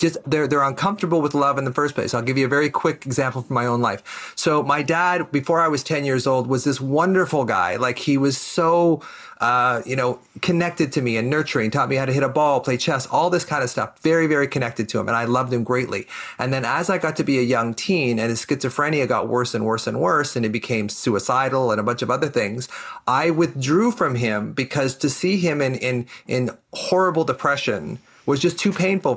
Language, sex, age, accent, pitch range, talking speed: English, male, 40-59, American, 125-165 Hz, 240 wpm